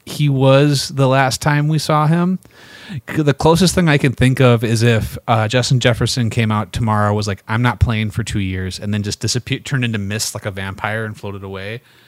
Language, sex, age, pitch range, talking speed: English, male, 30-49, 100-130 Hz, 220 wpm